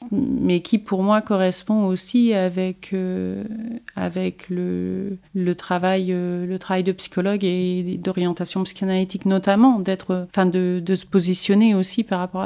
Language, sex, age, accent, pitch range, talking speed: French, female, 30-49, French, 175-200 Hz, 145 wpm